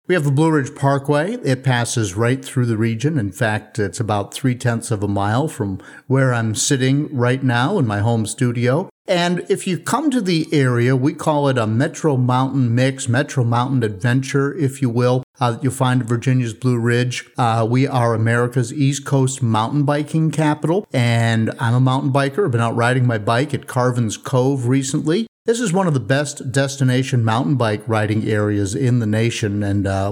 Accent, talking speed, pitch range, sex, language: American, 195 wpm, 115-140 Hz, male, English